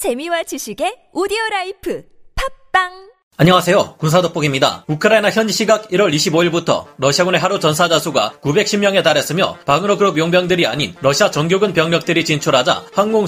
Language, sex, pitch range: Korean, male, 150-195 Hz